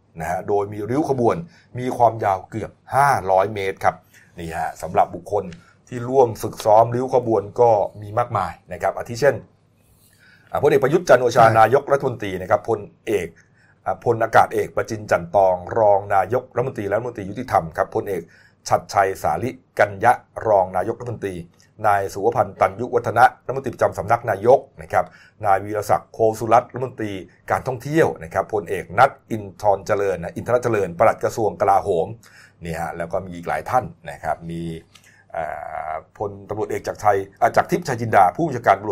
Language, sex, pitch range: Thai, male, 95-115 Hz